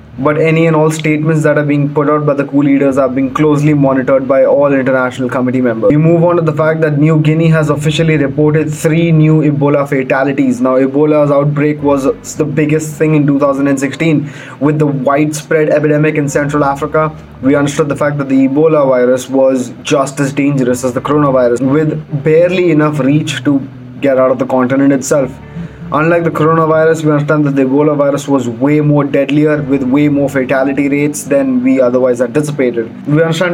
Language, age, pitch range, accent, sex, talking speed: English, 20-39, 140-155 Hz, Indian, male, 190 wpm